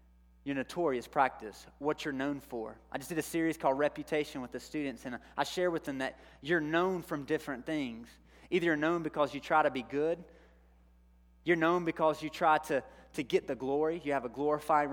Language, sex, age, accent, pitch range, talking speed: English, male, 30-49, American, 115-150 Hz, 205 wpm